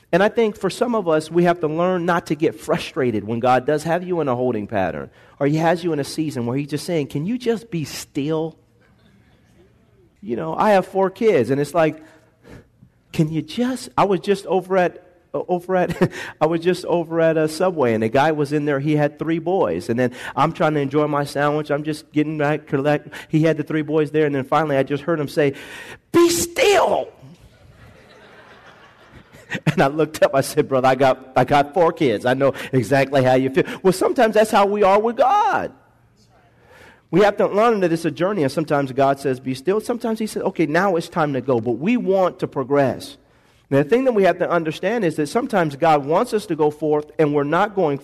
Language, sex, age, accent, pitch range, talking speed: English, male, 40-59, American, 140-180 Hz, 230 wpm